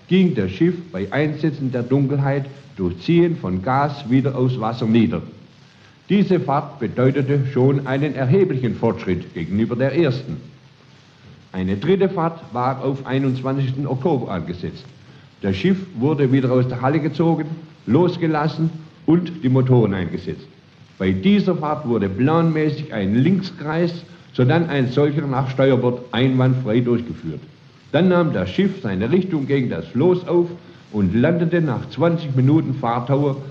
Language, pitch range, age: German, 125-165 Hz, 60-79